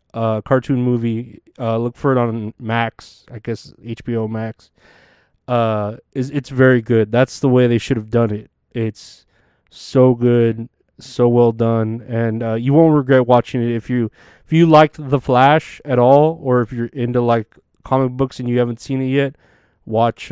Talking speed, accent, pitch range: 185 wpm, American, 115-130 Hz